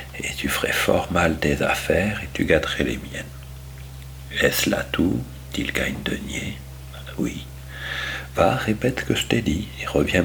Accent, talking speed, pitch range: French, 165 wpm, 100-150 Hz